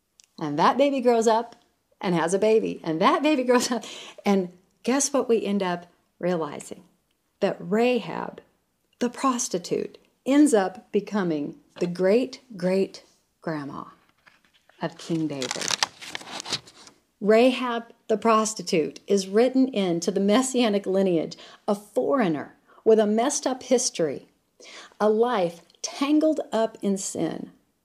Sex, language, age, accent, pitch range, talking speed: female, English, 50-69, American, 180-245 Hz, 125 wpm